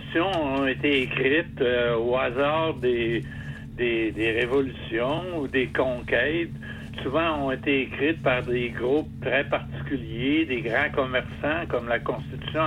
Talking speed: 135 wpm